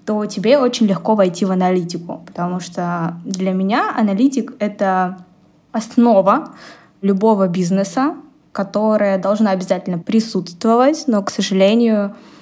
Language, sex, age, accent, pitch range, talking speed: Russian, female, 20-39, native, 175-210 Hz, 110 wpm